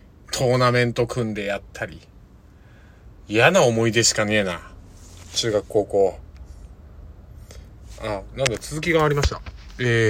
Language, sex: Japanese, male